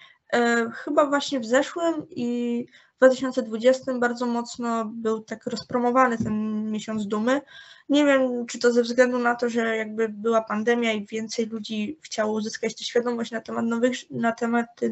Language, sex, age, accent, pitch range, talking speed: Polish, female, 20-39, native, 230-270 Hz, 155 wpm